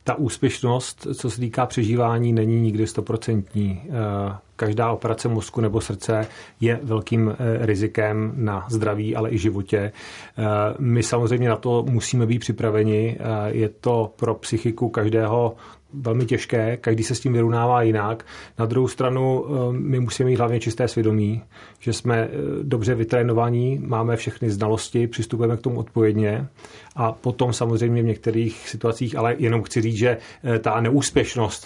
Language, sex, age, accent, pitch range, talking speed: Czech, male, 30-49, native, 110-120 Hz, 140 wpm